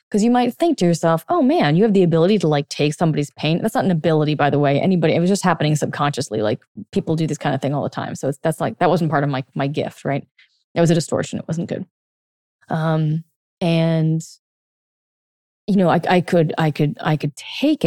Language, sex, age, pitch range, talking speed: English, female, 20-39, 155-195 Hz, 240 wpm